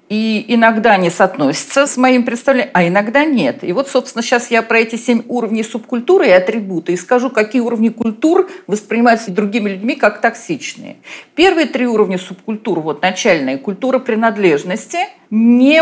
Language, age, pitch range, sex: Russian, 50-69, 210-265 Hz, female